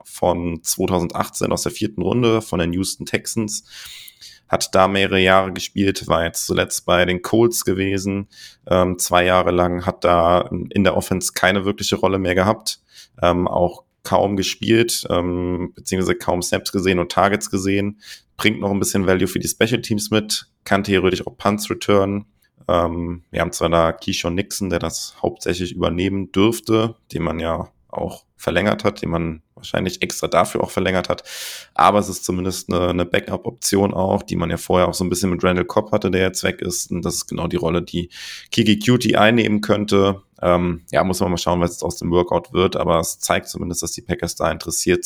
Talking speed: 195 wpm